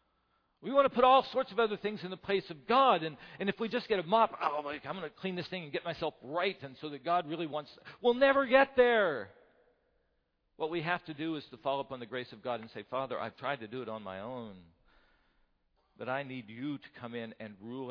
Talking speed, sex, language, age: 260 wpm, male, English, 50-69